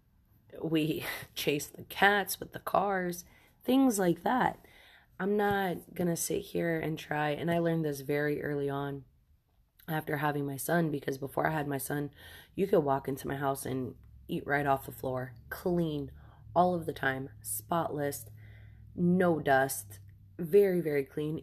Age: 20-39